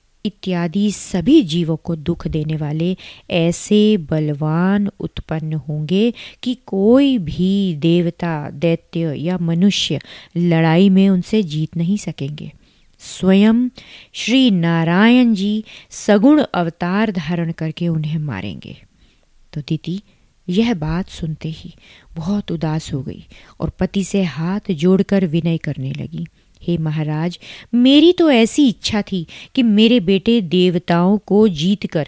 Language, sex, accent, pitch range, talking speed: Hindi, female, native, 165-220 Hz, 125 wpm